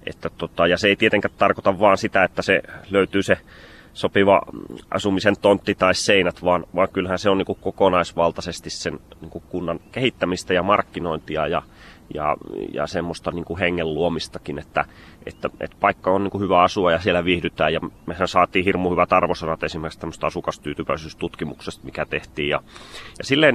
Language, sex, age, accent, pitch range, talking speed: Finnish, male, 30-49, native, 85-100 Hz, 160 wpm